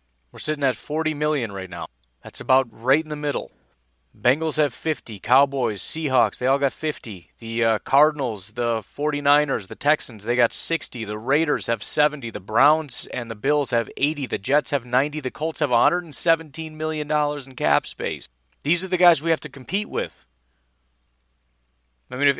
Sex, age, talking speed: male, 30-49, 180 wpm